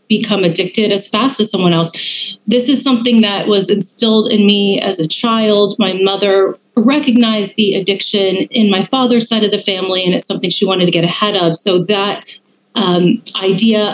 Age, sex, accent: 30-49, female, American